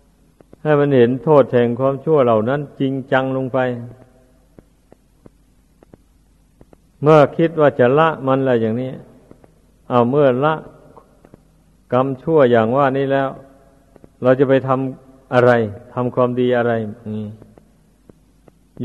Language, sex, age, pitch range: Thai, male, 60-79, 125-140 Hz